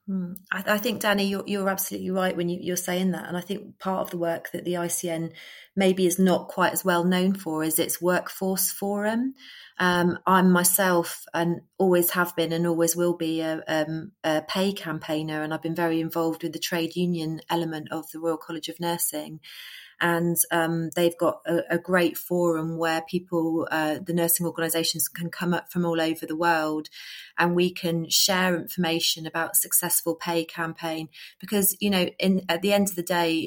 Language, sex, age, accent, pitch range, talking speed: English, female, 30-49, British, 165-180 Hz, 195 wpm